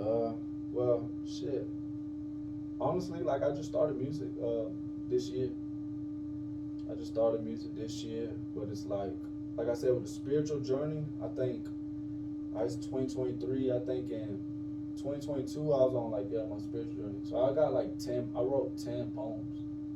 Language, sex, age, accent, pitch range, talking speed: English, male, 20-39, American, 100-150 Hz, 160 wpm